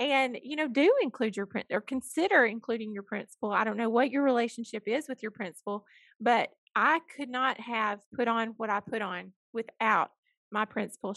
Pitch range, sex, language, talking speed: 215-265 Hz, female, English, 195 wpm